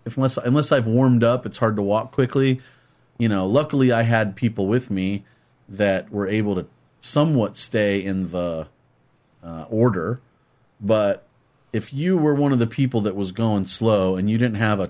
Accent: American